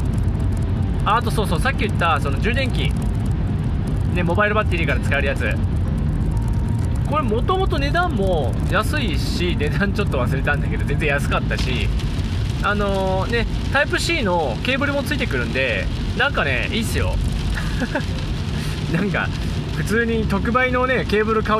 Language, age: Japanese, 20-39